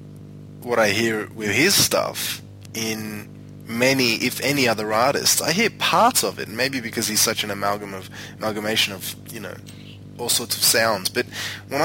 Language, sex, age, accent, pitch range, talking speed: English, male, 20-39, Australian, 105-130 Hz, 175 wpm